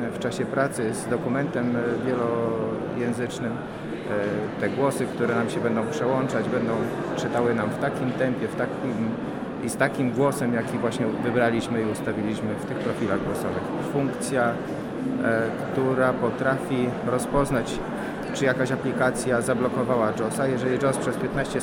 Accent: native